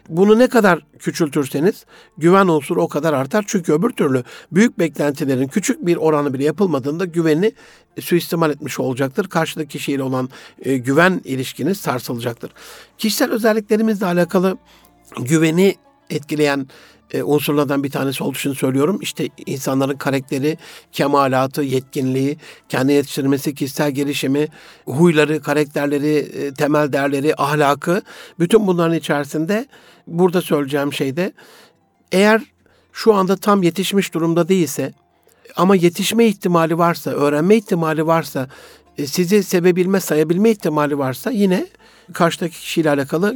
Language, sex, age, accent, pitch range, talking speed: Turkish, male, 60-79, native, 145-180 Hz, 115 wpm